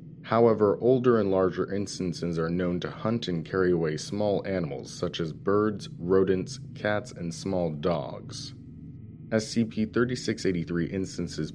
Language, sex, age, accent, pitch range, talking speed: English, male, 30-49, American, 90-110 Hz, 125 wpm